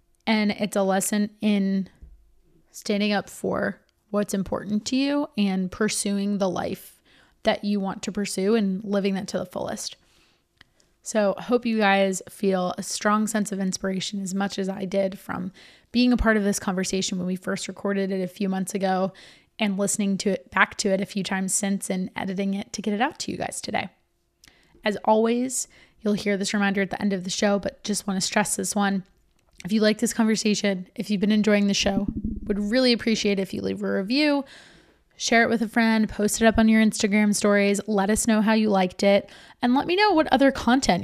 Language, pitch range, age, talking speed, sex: English, 195-220 Hz, 20-39, 215 wpm, female